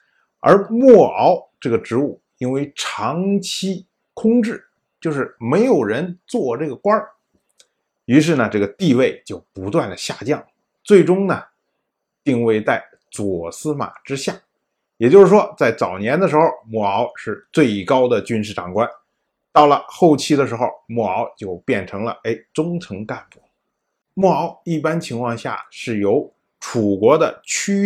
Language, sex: Chinese, male